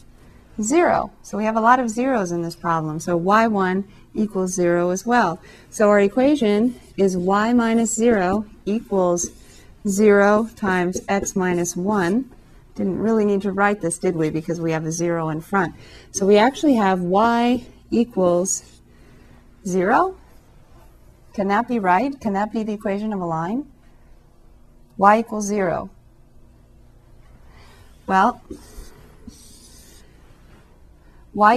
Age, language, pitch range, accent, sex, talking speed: 40-59, English, 175-225 Hz, American, female, 130 wpm